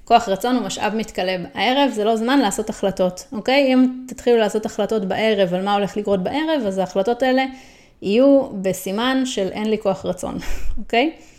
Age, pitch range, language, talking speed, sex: 30-49, 195-260 Hz, Hebrew, 175 wpm, female